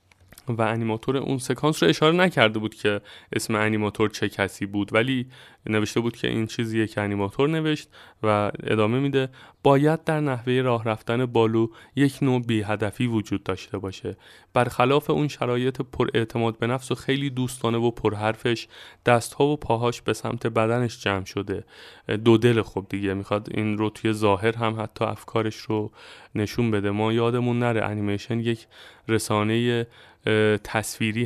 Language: Persian